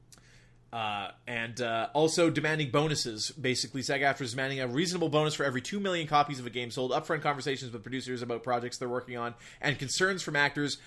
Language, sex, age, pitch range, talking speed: English, male, 20-39, 125-155 Hz, 200 wpm